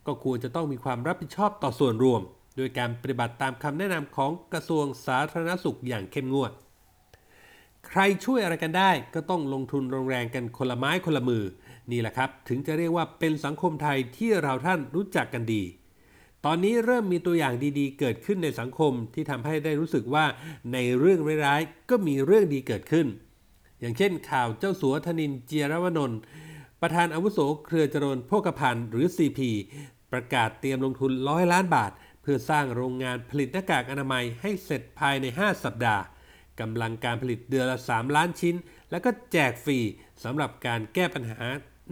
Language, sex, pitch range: Thai, male, 125-165 Hz